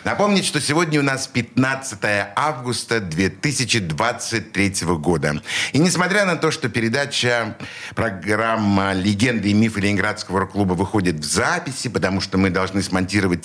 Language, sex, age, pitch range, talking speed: Russian, male, 60-79, 100-150 Hz, 130 wpm